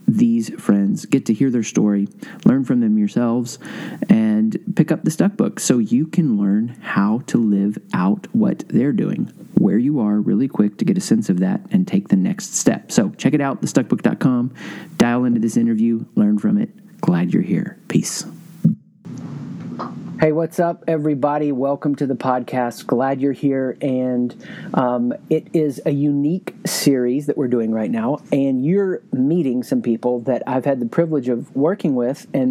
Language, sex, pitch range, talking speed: English, male, 130-200 Hz, 180 wpm